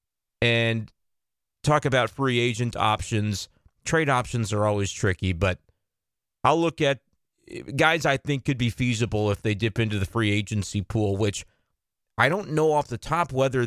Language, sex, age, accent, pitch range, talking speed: English, male, 30-49, American, 110-140 Hz, 160 wpm